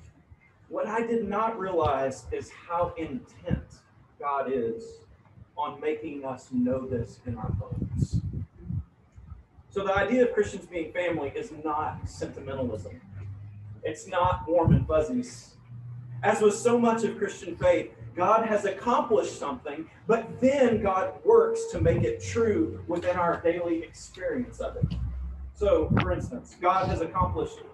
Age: 40-59